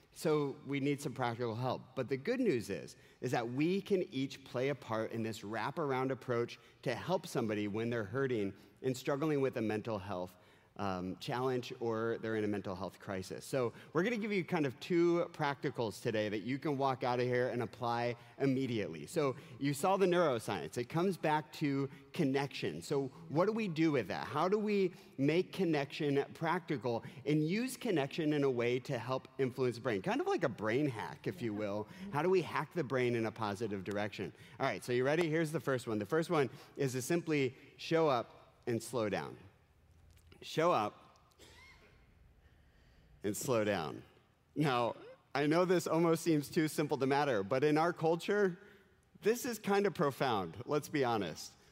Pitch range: 120-165 Hz